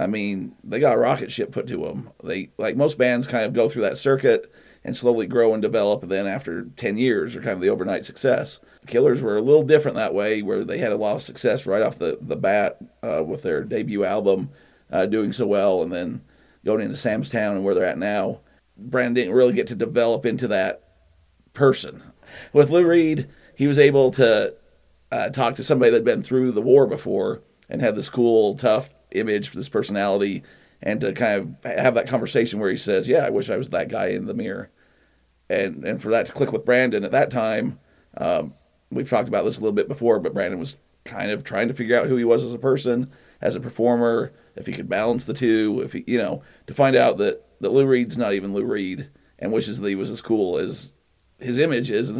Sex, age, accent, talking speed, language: male, 50-69, American, 235 wpm, English